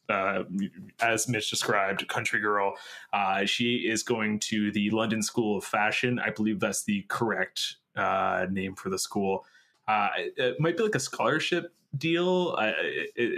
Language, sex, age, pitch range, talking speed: English, male, 20-39, 105-130 Hz, 165 wpm